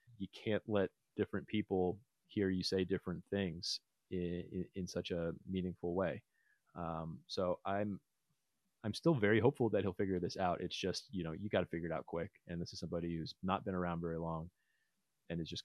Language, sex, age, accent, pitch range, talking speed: English, male, 30-49, American, 90-105 Hz, 205 wpm